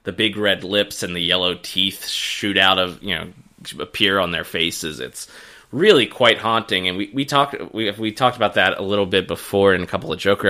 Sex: male